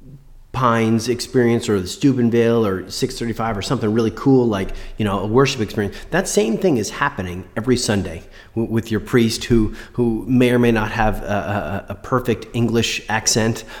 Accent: American